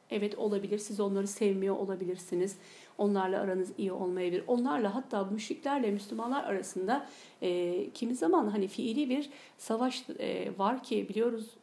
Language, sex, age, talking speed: Turkish, female, 50-69, 140 wpm